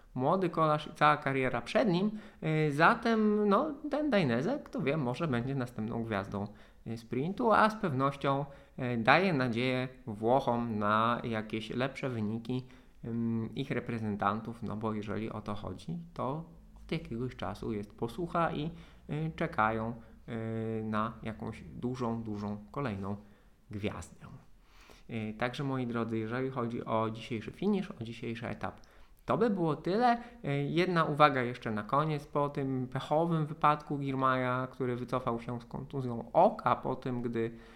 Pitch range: 115-150 Hz